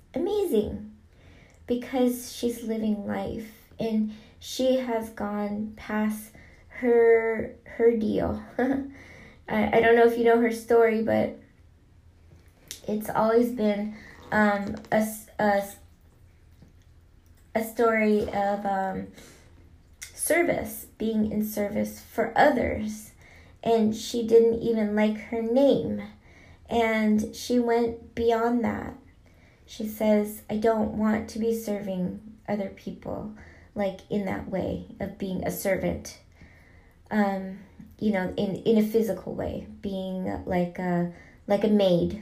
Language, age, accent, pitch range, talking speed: English, 20-39, American, 175-230 Hz, 115 wpm